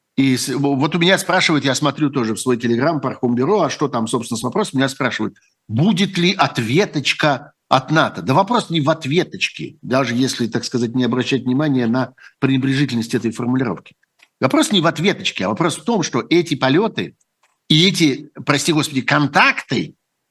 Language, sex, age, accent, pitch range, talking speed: Russian, male, 60-79, native, 135-190 Hz, 170 wpm